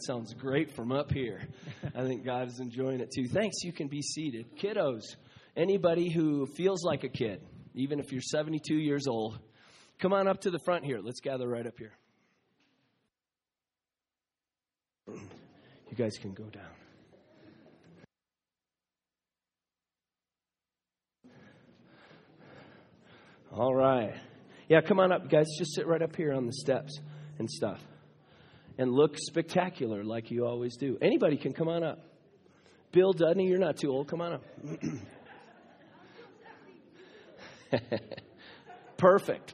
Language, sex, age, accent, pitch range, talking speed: English, male, 30-49, American, 120-175 Hz, 130 wpm